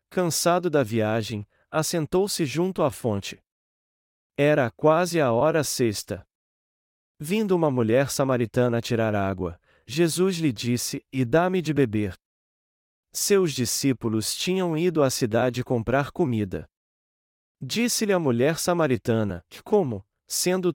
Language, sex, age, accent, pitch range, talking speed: Portuguese, male, 40-59, Brazilian, 110-170 Hz, 115 wpm